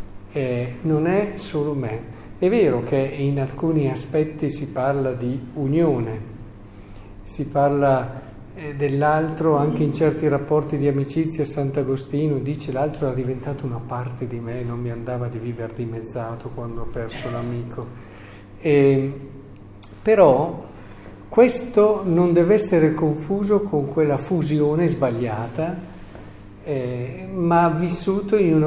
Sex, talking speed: male, 125 wpm